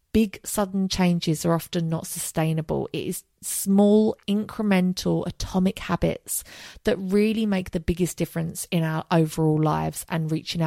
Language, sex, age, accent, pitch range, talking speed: English, female, 30-49, British, 165-215 Hz, 140 wpm